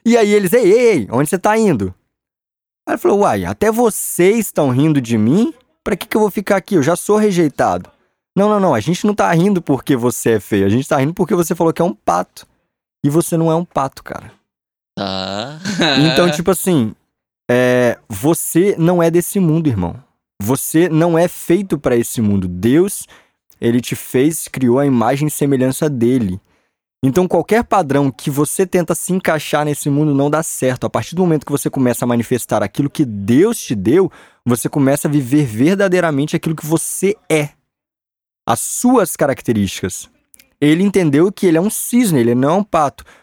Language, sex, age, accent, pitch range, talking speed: Portuguese, male, 20-39, Brazilian, 125-185 Hz, 190 wpm